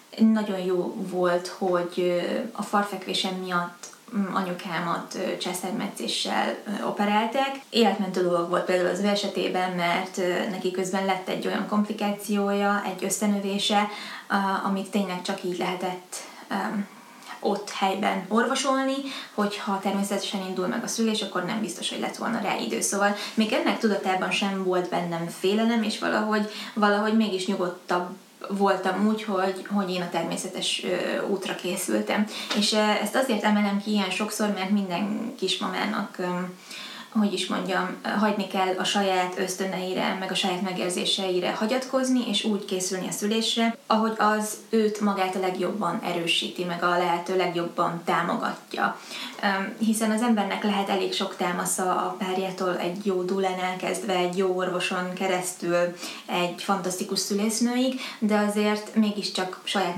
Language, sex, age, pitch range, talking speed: Hungarian, female, 20-39, 185-210 Hz, 135 wpm